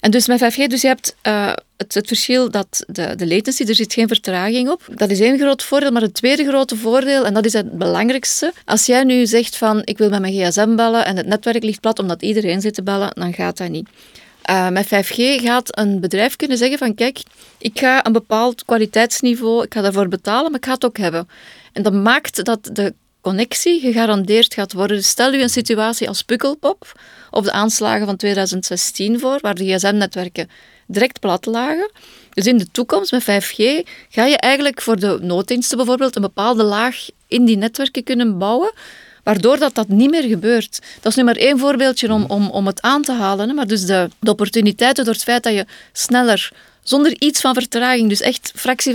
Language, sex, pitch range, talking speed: Dutch, female, 205-255 Hz, 210 wpm